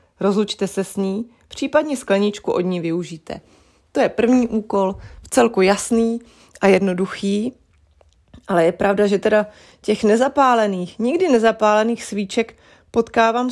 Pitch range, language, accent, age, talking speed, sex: 185-230 Hz, Czech, native, 30-49, 125 wpm, female